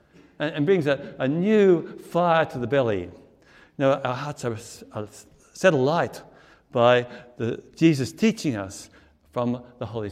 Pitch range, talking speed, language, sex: 135-205 Hz, 150 wpm, English, male